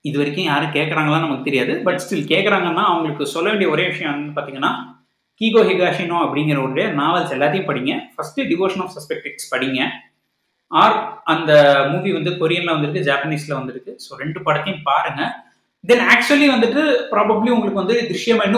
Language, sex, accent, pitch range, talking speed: Tamil, male, native, 155-235 Hz, 50 wpm